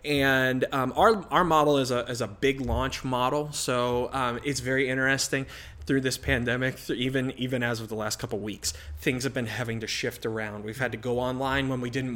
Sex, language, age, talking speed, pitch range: male, English, 20-39, 215 wpm, 110-130 Hz